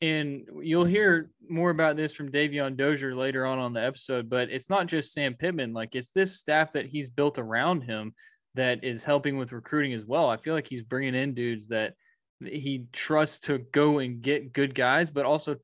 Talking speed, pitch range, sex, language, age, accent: 205 wpm, 120-150 Hz, male, English, 20-39, American